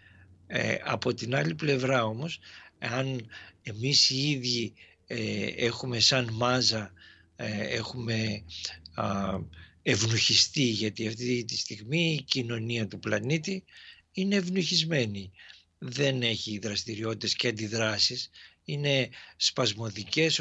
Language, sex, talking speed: Greek, male, 105 wpm